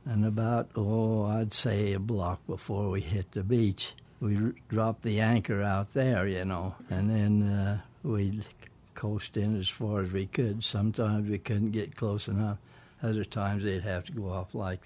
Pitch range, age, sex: 100-115 Hz, 60-79, male